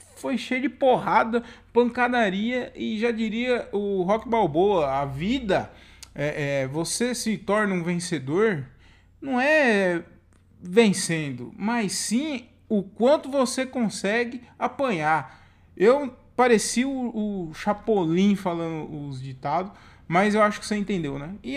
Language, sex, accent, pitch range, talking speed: Portuguese, male, Brazilian, 165-240 Hz, 130 wpm